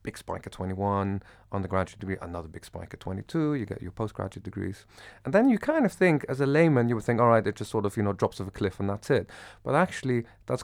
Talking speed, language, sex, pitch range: 260 wpm, English, male, 95-125 Hz